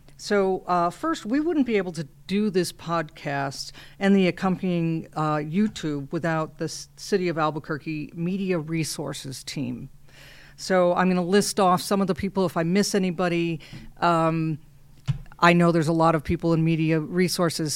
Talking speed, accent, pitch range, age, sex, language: 165 wpm, American, 150-190 Hz, 50-69, female, English